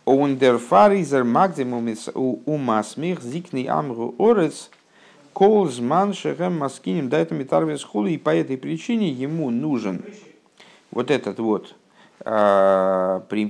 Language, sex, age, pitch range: Russian, male, 50-69, 105-145 Hz